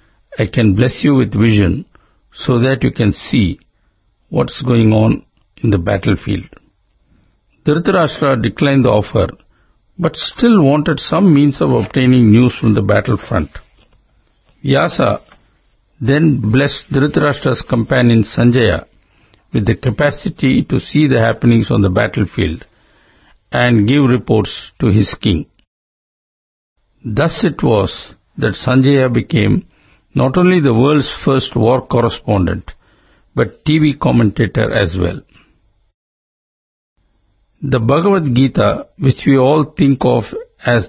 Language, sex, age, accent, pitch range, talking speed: English, male, 60-79, Indian, 105-135 Hz, 120 wpm